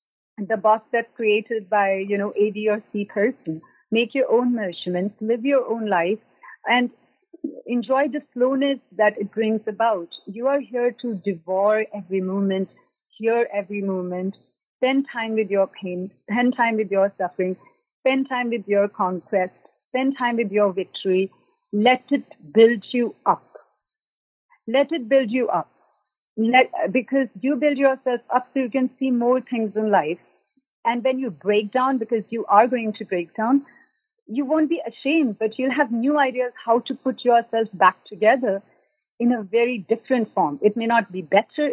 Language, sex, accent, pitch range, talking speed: English, female, Indian, 205-260 Hz, 170 wpm